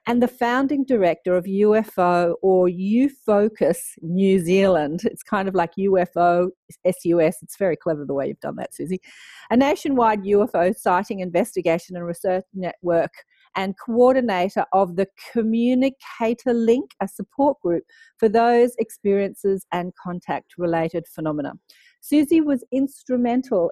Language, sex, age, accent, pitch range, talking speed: English, female, 40-59, Australian, 175-230 Hz, 130 wpm